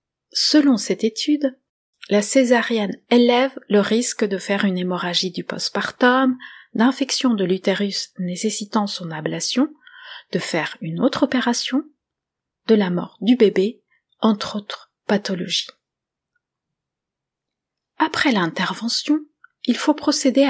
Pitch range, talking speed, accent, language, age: 205-265 Hz, 110 wpm, French, French, 30-49